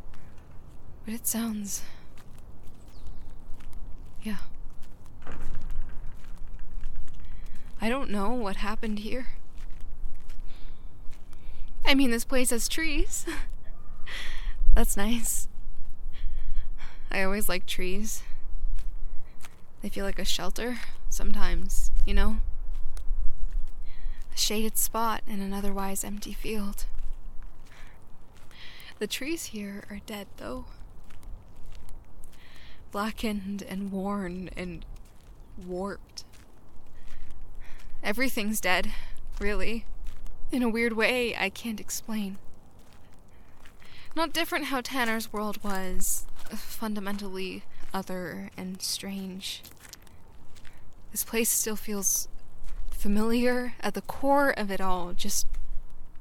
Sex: female